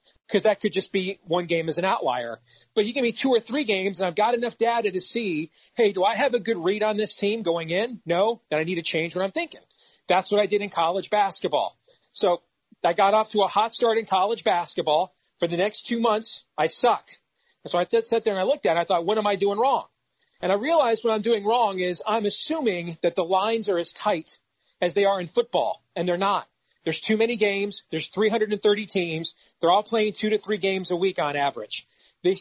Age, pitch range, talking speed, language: 40-59, 175-225 Hz, 245 wpm, English